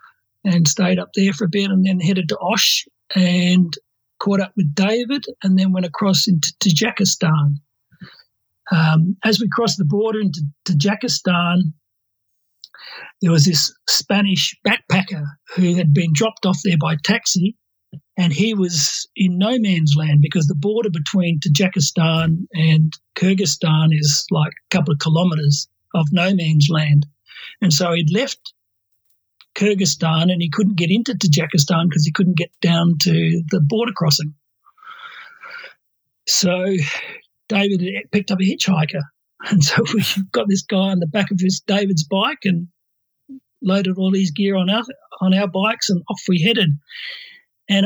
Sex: male